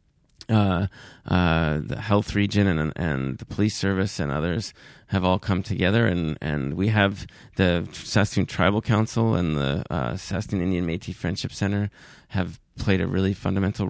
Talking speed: 160 wpm